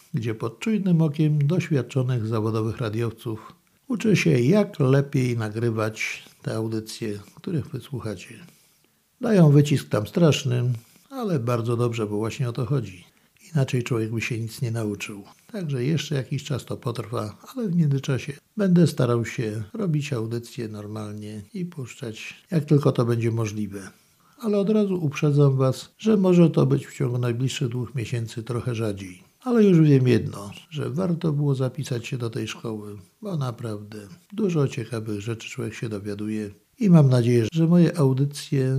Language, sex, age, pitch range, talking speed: Polish, male, 60-79, 115-150 Hz, 155 wpm